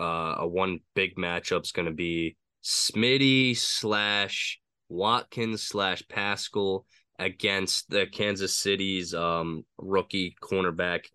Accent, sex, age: American, male, 20-39